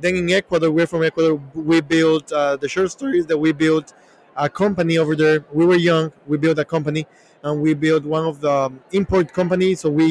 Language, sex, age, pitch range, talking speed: English, male, 20-39, 155-185 Hz, 215 wpm